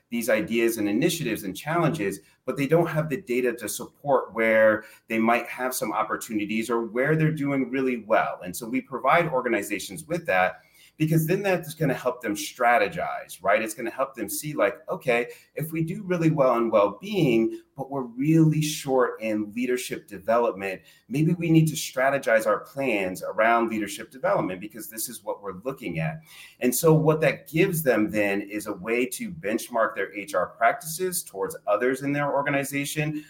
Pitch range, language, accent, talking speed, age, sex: 110-160 Hz, English, American, 180 wpm, 30-49, male